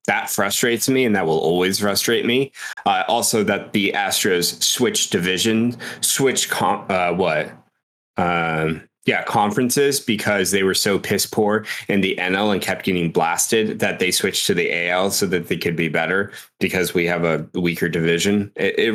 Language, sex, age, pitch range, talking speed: English, male, 20-39, 90-130 Hz, 175 wpm